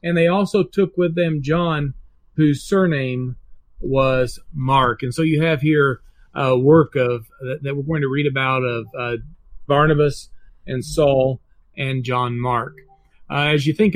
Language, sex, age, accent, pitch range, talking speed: English, male, 40-59, American, 135-175 Hz, 155 wpm